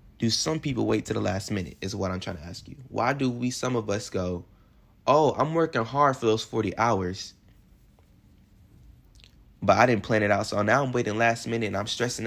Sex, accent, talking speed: male, American, 220 wpm